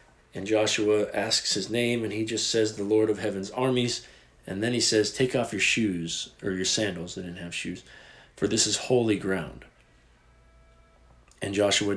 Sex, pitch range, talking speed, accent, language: male, 105-130 Hz, 180 wpm, American, English